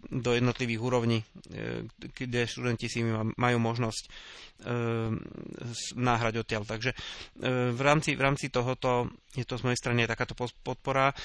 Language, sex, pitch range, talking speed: Slovak, male, 120-135 Hz, 125 wpm